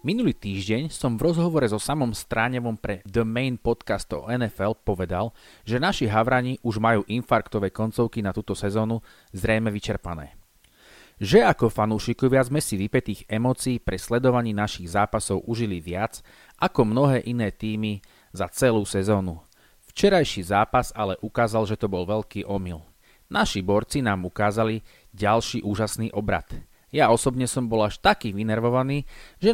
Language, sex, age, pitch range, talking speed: Slovak, male, 30-49, 105-130 Hz, 145 wpm